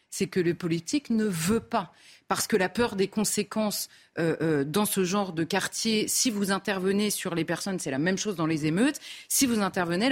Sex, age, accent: female, 30-49, French